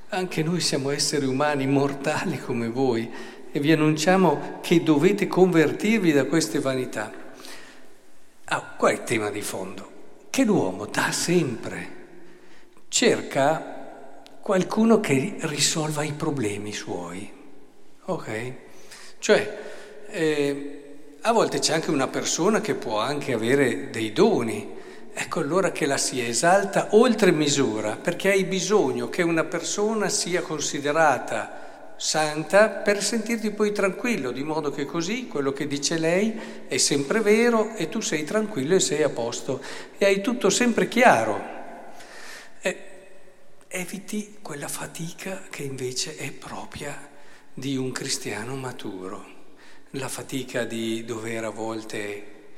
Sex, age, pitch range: male, 50-69, 140-195 Hz